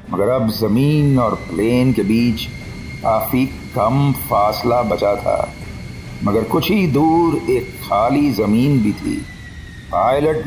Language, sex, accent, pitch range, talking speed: Hindi, male, native, 115-150 Hz, 125 wpm